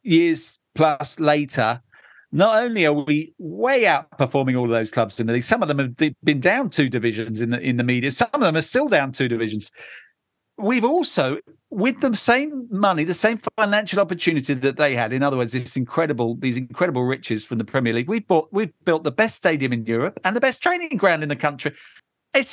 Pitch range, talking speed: 130-195 Hz, 215 wpm